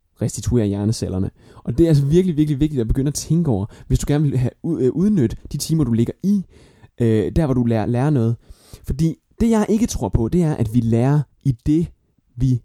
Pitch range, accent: 105-145 Hz, native